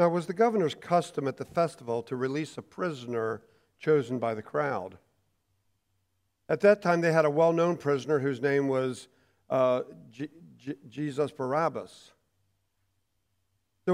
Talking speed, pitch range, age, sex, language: 140 wpm, 100-160 Hz, 50-69, male, English